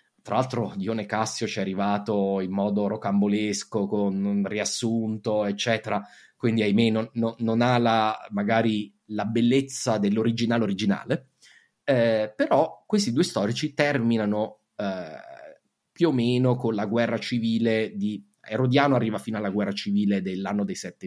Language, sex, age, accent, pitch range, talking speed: Italian, male, 20-39, native, 105-125 Hz, 140 wpm